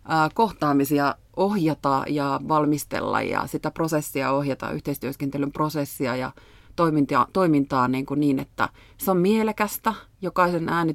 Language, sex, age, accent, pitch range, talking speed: Finnish, female, 30-49, native, 135-160 Hz, 110 wpm